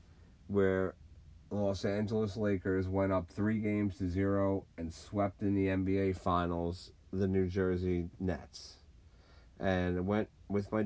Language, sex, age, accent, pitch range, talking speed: English, male, 40-59, American, 85-95 Hz, 140 wpm